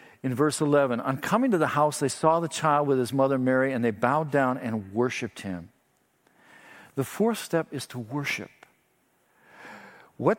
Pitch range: 135-180 Hz